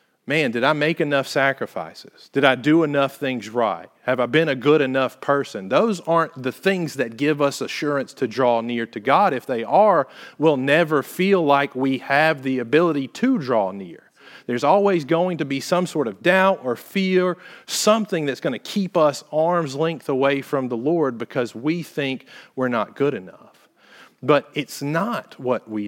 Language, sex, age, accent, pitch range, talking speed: English, male, 40-59, American, 130-160 Hz, 190 wpm